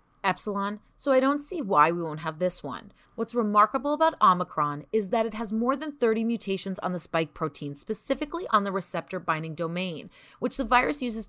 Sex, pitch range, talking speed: female, 180-255 Hz, 195 wpm